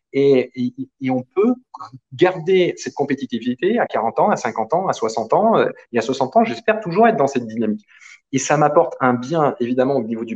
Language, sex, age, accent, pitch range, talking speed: French, male, 20-39, French, 120-170 Hz, 210 wpm